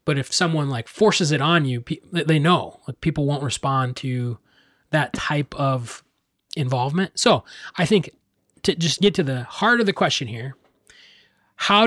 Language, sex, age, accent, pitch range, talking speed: English, male, 20-39, American, 135-180 Hz, 170 wpm